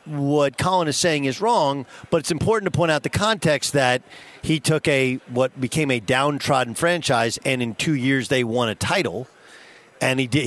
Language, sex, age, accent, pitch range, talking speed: English, male, 50-69, American, 135-170 Hz, 195 wpm